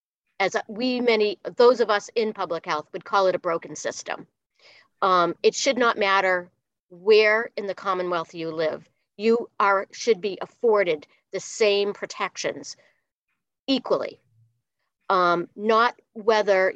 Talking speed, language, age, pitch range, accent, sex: 135 wpm, English, 40-59, 180-230 Hz, American, female